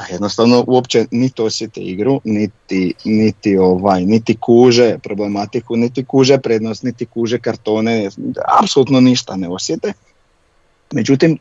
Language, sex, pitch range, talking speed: Croatian, male, 105-125 Hz, 120 wpm